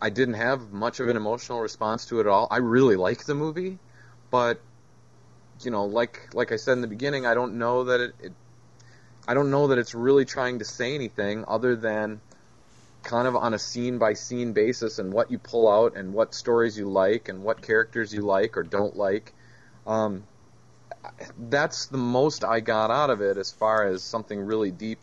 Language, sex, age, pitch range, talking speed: English, male, 30-49, 105-125 Hz, 205 wpm